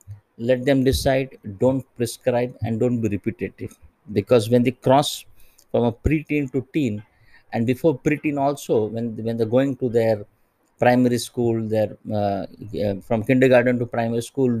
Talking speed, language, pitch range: 155 wpm, English, 110-130 Hz